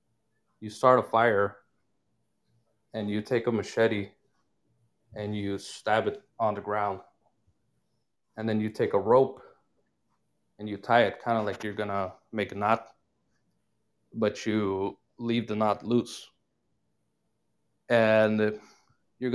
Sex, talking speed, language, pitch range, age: male, 135 wpm, English, 105-115 Hz, 20-39